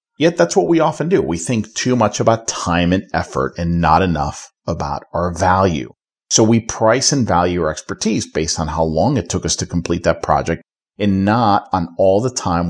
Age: 40-59